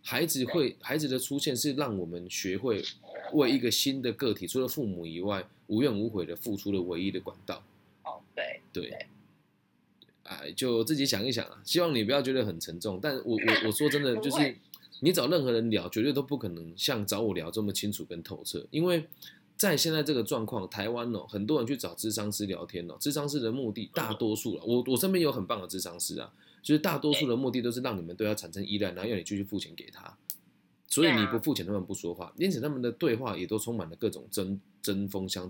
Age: 20-39